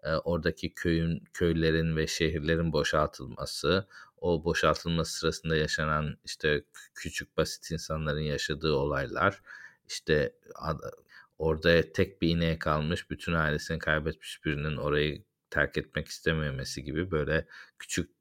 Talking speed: 110 wpm